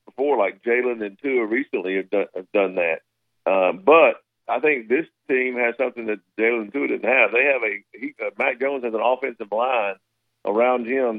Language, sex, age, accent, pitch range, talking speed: English, male, 50-69, American, 110-140 Hz, 190 wpm